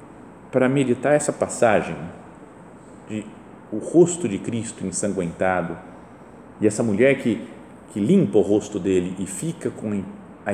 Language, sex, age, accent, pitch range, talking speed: Portuguese, male, 40-59, Brazilian, 105-155 Hz, 130 wpm